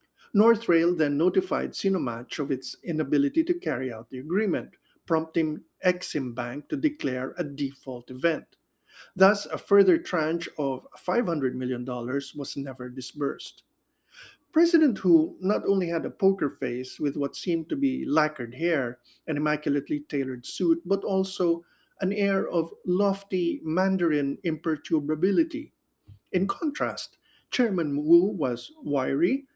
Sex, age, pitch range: male, 50-69, 145-200 Hz